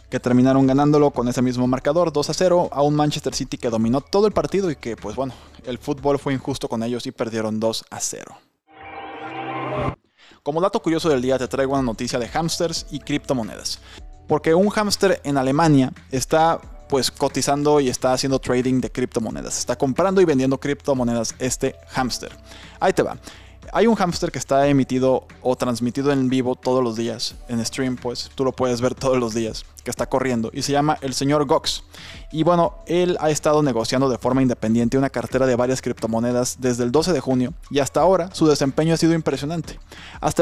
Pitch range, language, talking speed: 120-145 Hz, Spanish, 195 wpm